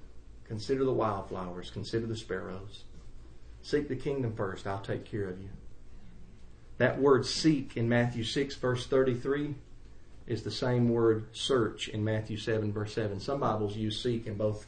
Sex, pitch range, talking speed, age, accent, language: male, 105-135 Hz, 160 wpm, 40-59, American, English